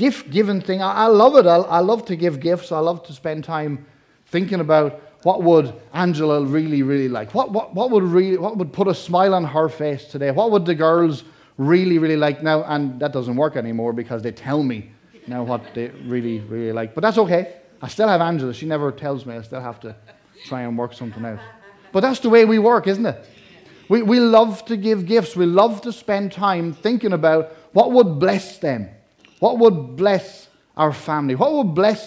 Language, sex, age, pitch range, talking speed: English, male, 30-49, 140-195 Hz, 210 wpm